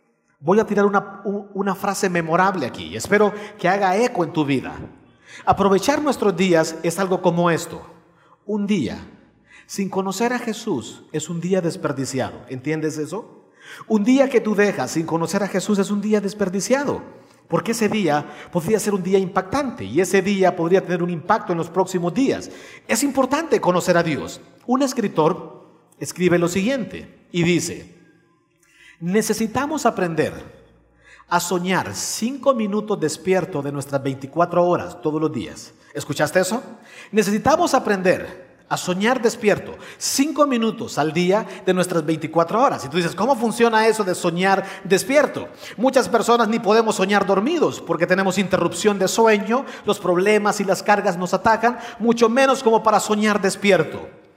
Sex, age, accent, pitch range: male, 50-69, Mexican, 170-220 Hz